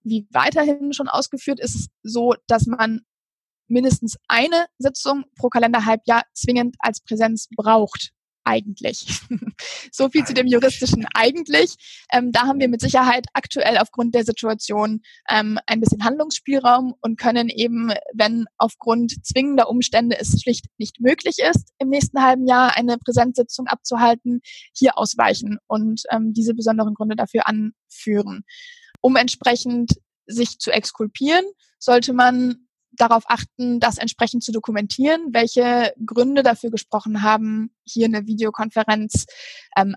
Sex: female